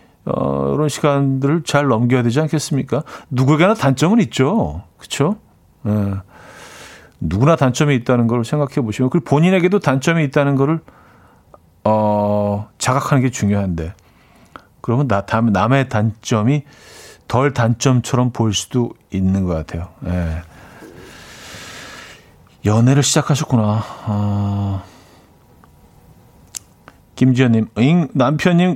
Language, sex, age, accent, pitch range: Korean, male, 40-59, native, 105-155 Hz